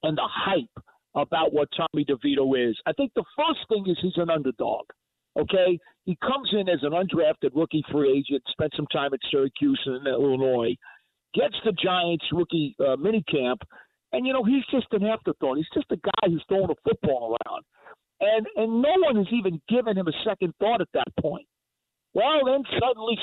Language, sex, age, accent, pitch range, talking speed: English, male, 50-69, American, 165-230 Hz, 190 wpm